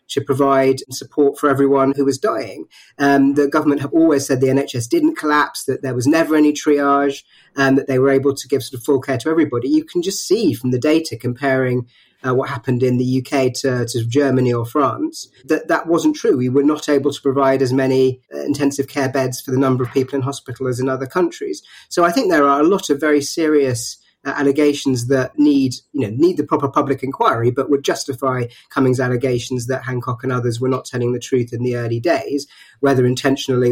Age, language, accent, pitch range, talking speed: 30-49, English, British, 130-145 Hz, 220 wpm